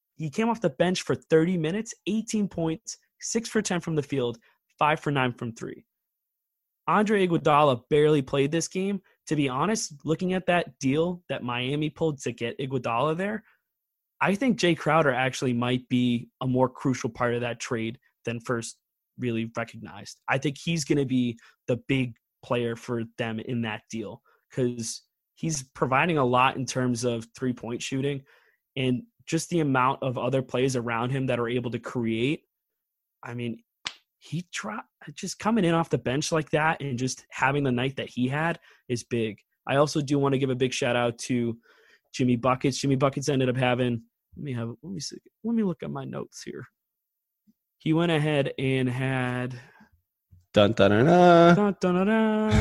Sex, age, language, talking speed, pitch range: male, 20-39, English, 180 wpm, 125-165 Hz